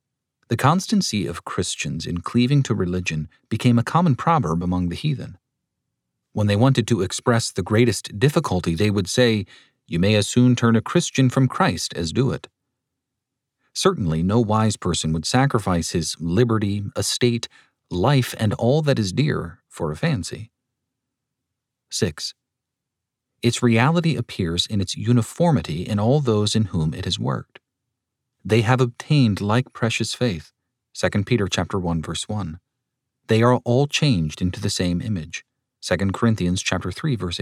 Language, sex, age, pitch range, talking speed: English, male, 40-59, 95-130 Hz, 155 wpm